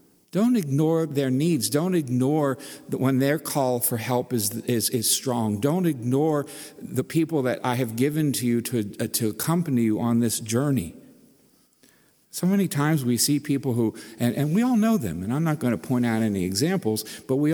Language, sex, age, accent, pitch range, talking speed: English, male, 50-69, American, 95-145 Hz, 200 wpm